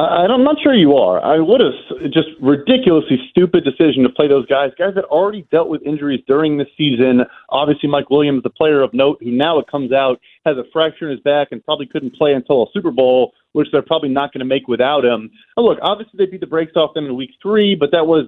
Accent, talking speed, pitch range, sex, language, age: American, 245 wpm, 140-175 Hz, male, English, 30-49